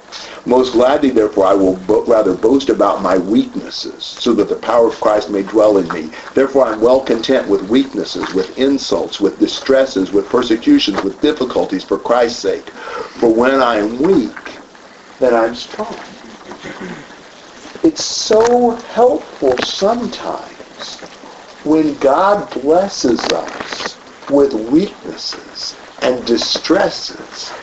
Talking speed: 125 wpm